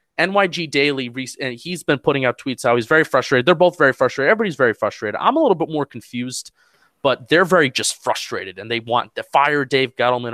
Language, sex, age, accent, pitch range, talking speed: English, male, 20-39, American, 120-155 Hz, 220 wpm